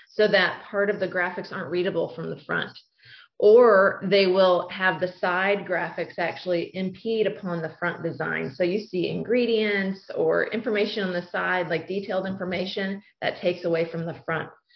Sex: female